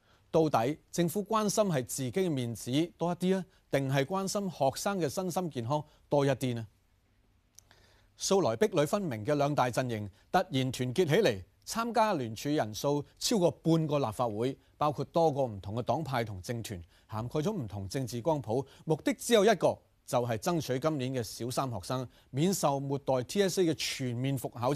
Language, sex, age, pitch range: Chinese, male, 30-49, 120-175 Hz